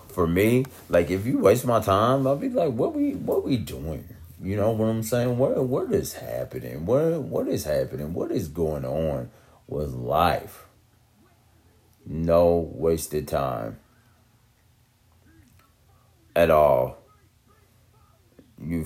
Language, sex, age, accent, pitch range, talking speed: English, male, 30-49, American, 75-110 Hz, 130 wpm